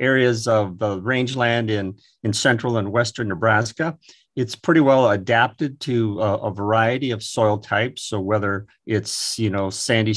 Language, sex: English, male